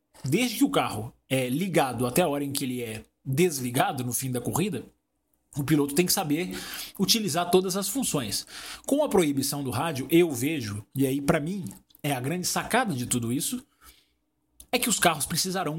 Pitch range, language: 135-180 Hz, Portuguese